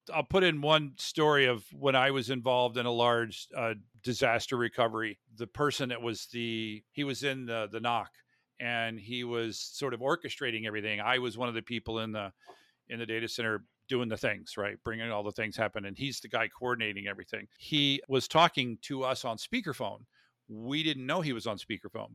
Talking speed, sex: 205 wpm, male